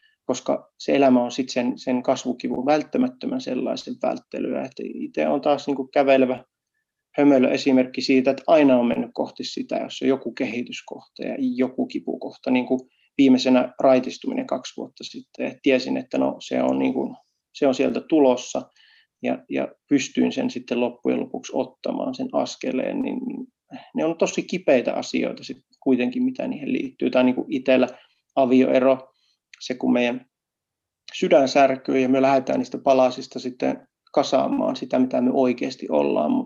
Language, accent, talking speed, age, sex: Finnish, native, 150 wpm, 30-49, male